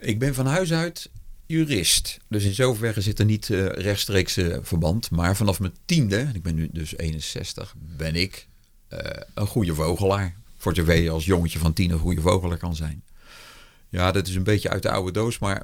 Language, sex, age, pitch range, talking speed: Dutch, male, 40-59, 85-115 Hz, 205 wpm